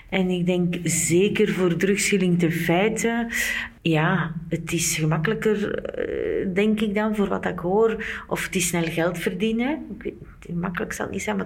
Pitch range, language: 170-220 Hz, Dutch